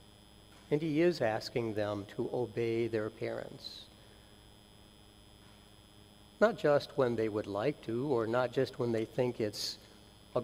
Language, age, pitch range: English, 60-79, 105-150 Hz